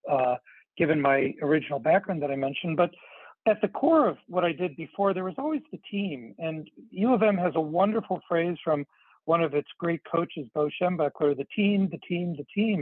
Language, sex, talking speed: English, male, 210 wpm